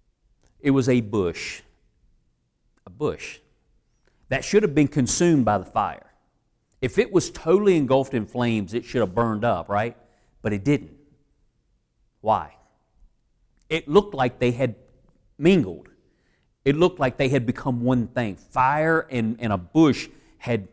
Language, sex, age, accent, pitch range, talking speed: English, male, 40-59, American, 115-150 Hz, 150 wpm